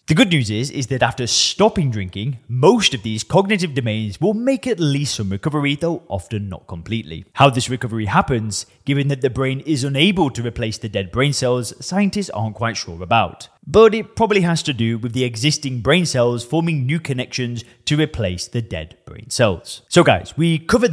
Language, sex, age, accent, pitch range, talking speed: English, male, 20-39, British, 115-150 Hz, 200 wpm